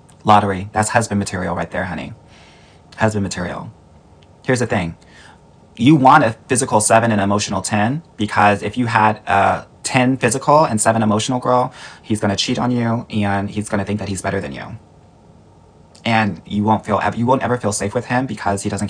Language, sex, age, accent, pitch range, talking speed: English, male, 30-49, American, 95-110 Hz, 195 wpm